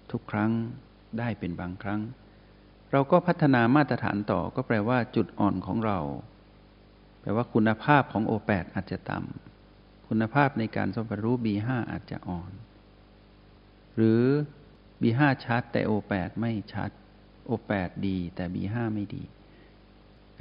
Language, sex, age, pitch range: Thai, male, 60-79, 100-115 Hz